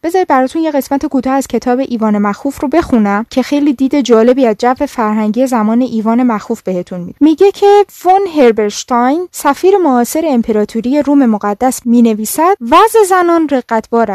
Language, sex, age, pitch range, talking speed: Persian, female, 10-29, 230-305 Hz, 155 wpm